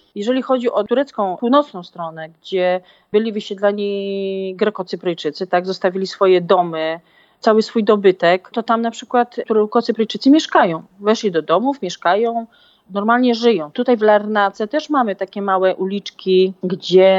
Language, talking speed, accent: Polish, 135 wpm, native